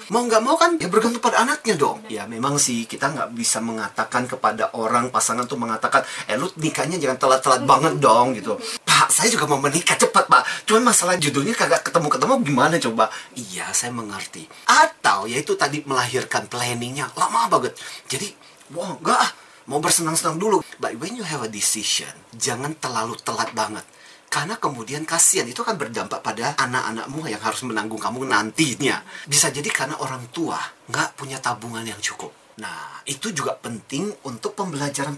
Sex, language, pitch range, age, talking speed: male, Indonesian, 120-195 Hz, 30-49, 165 wpm